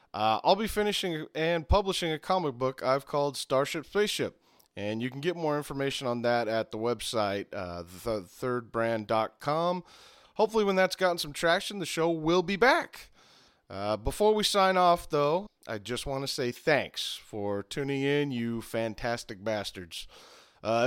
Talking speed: 160 wpm